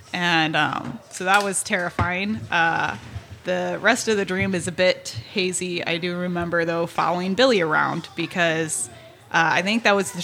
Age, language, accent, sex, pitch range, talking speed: 20-39, English, American, female, 165-200 Hz, 175 wpm